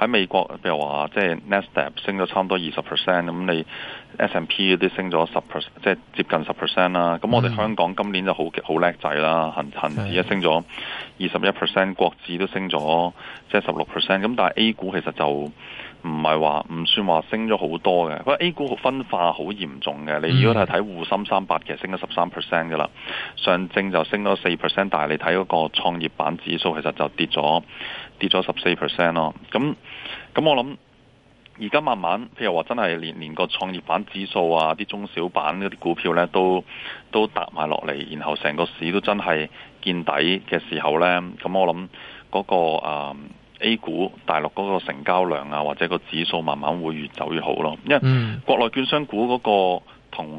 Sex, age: male, 20-39